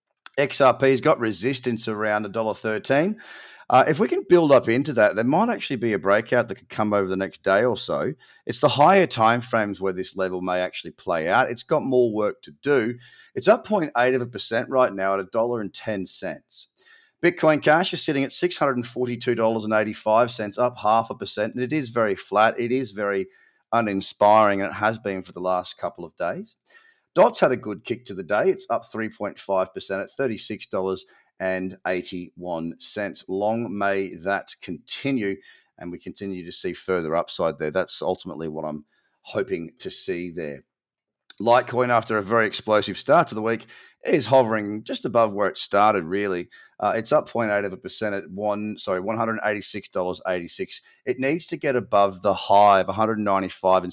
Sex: male